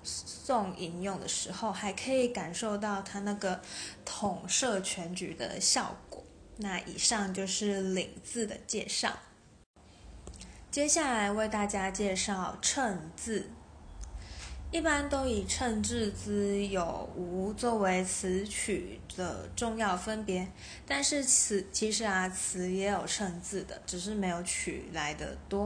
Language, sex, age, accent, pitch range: Chinese, female, 20-39, native, 185-220 Hz